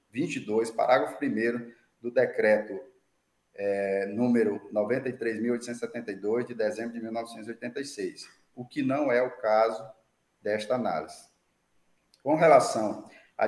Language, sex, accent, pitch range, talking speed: Portuguese, male, Brazilian, 105-125 Hz, 100 wpm